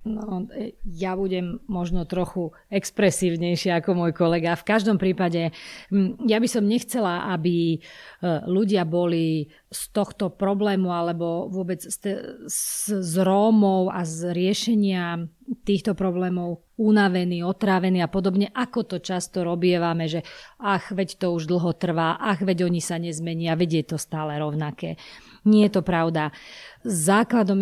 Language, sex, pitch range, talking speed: Slovak, female, 170-210 Hz, 135 wpm